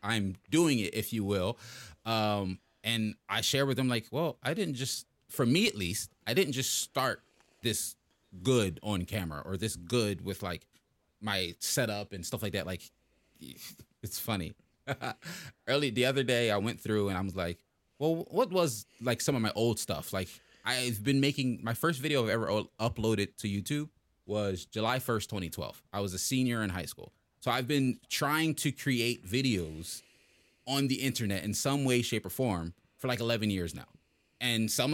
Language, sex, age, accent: English, male, 20-39, American